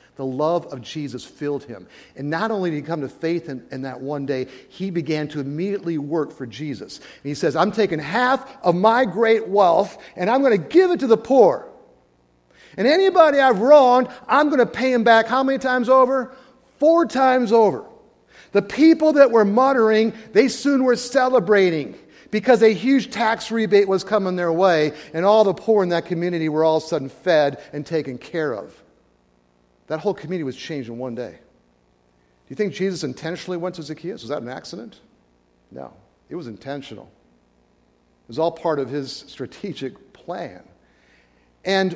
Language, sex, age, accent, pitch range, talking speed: English, male, 50-69, American, 145-230 Hz, 185 wpm